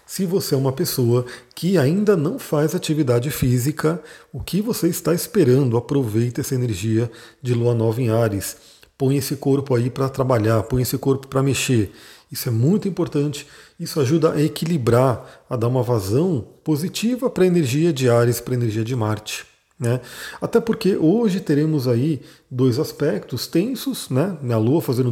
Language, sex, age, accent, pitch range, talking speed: Portuguese, male, 40-59, Brazilian, 125-160 Hz, 165 wpm